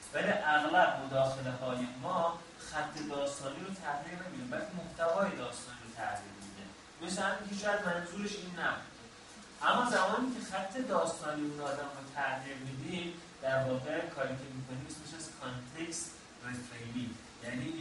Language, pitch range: Persian, 125-175 Hz